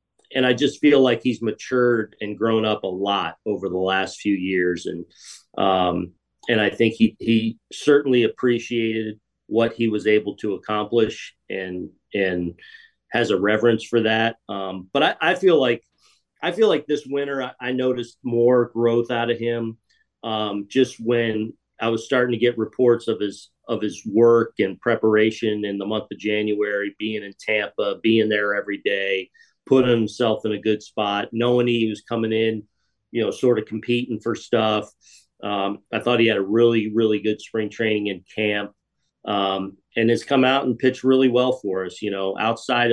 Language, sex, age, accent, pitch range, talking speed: English, male, 40-59, American, 105-120 Hz, 185 wpm